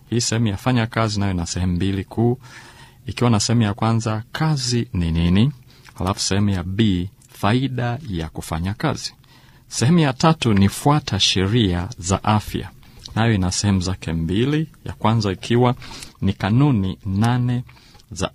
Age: 40-59